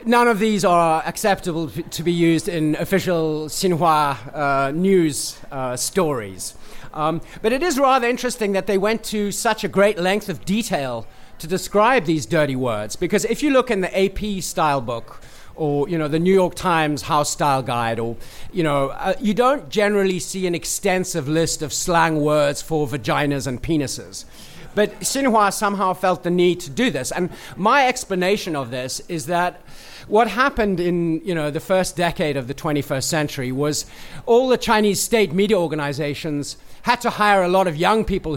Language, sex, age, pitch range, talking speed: English, male, 40-59, 155-200 Hz, 180 wpm